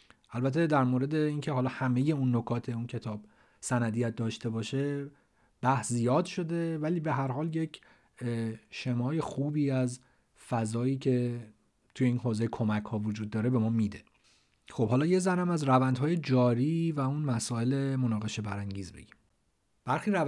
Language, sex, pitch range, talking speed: Persian, male, 120-150 Hz, 150 wpm